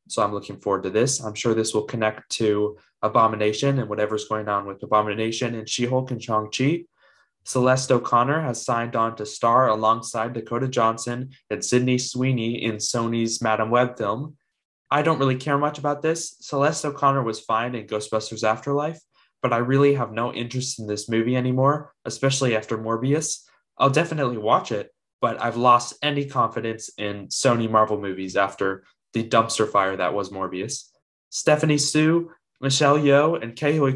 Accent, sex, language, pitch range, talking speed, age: American, male, English, 110-135 Hz, 170 wpm, 20-39